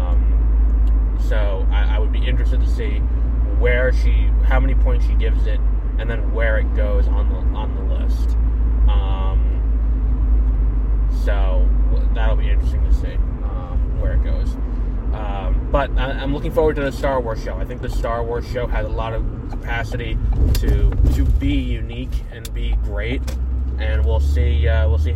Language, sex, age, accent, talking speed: English, male, 20-39, American, 170 wpm